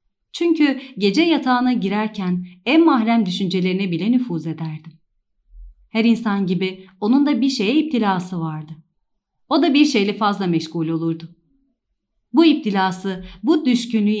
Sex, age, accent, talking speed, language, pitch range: female, 40-59, native, 125 wpm, Turkish, 175-255 Hz